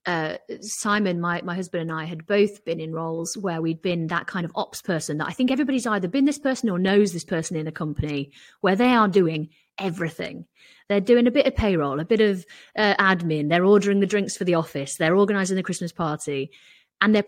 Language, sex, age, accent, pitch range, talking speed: English, female, 30-49, British, 160-205 Hz, 225 wpm